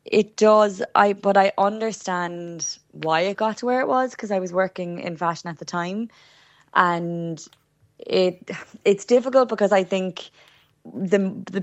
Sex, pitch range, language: female, 150-170 Hz, English